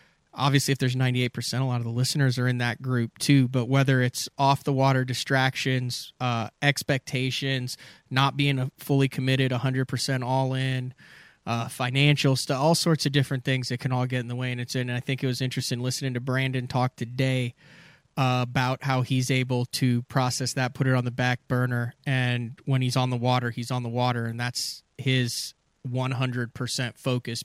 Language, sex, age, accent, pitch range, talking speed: English, male, 20-39, American, 120-135 Hz, 180 wpm